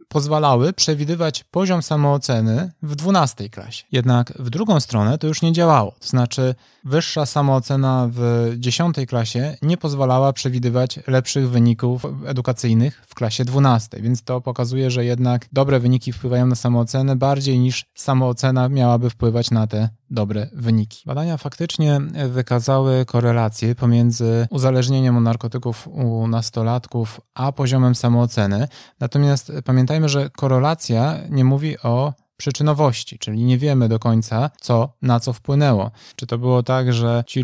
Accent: native